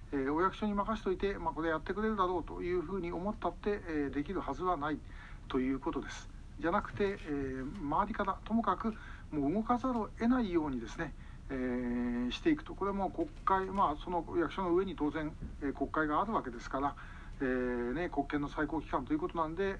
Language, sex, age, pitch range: Japanese, male, 60-79, 145-190 Hz